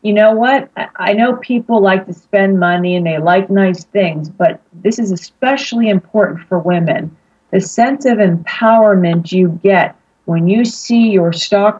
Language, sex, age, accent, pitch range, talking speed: English, female, 40-59, American, 180-225 Hz, 170 wpm